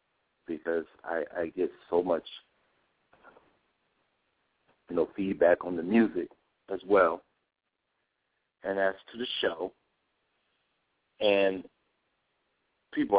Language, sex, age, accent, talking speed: English, male, 60-79, American, 95 wpm